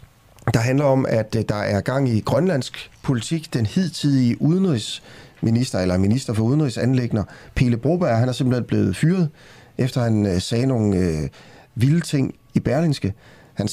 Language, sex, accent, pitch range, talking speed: Danish, male, native, 105-135 Hz, 150 wpm